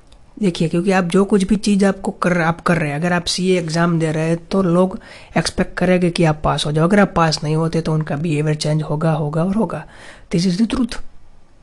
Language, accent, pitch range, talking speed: Hindi, native, 160-190 Hz, 235 wpm